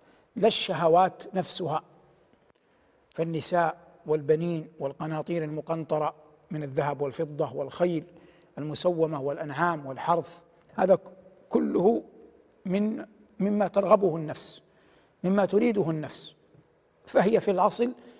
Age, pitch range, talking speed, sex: 60-79, 165-205 Hz, 85 wpm, male